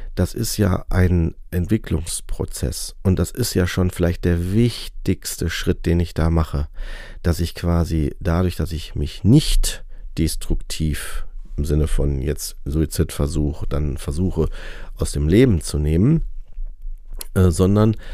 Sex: male